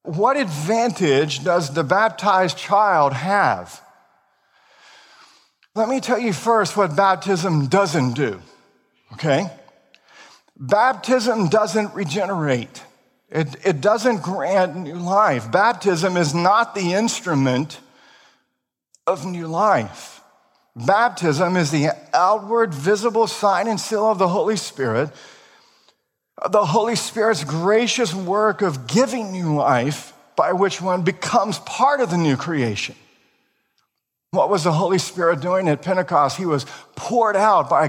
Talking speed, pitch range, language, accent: 120 wpm, 170-220 Hz, English, American